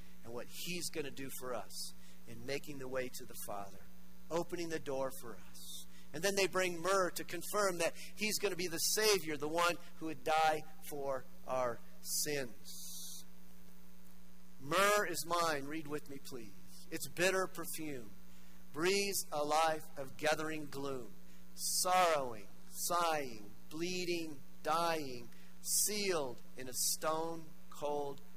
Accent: American